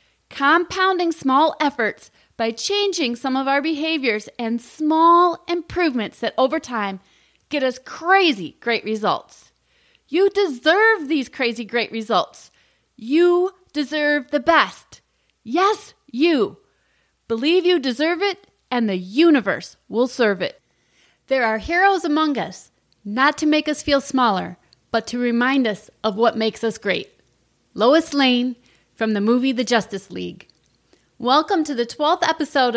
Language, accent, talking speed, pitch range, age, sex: English, American, 135 wpm, 230-315 Hz, 30-49, female